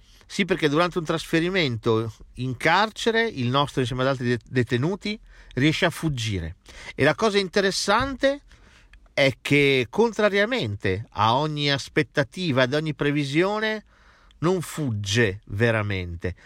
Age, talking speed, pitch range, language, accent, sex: 50-69, 115 wpm, 110-155 Hz, Italian, native, male